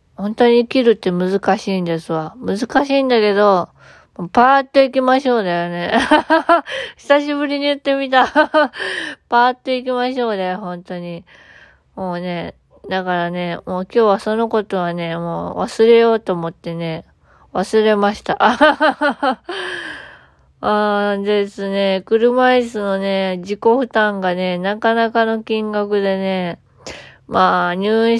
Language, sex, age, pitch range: Japanese, female, 20-39, 180-245 Hz